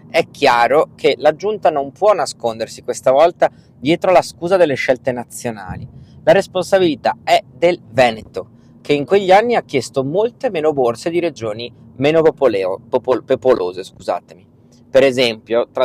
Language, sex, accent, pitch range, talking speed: Italian, male, native, 120-155 Hz, 150 wpm